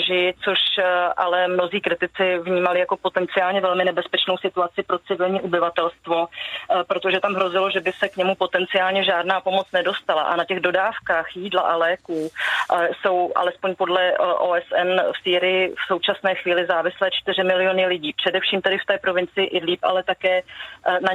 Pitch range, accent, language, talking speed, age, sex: 180-195 Hz, native, Czech, 155 wpm, 30-49, female